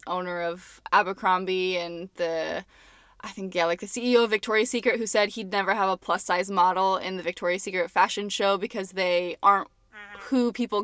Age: 20-39